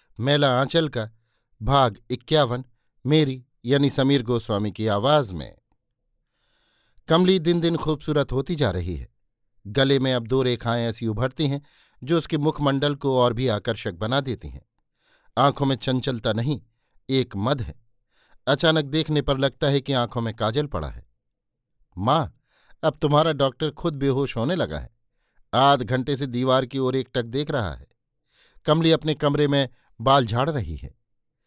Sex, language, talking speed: male, Hindi, 160 wpm